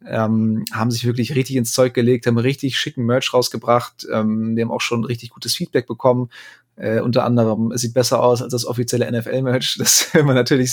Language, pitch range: German, 115-130 Hz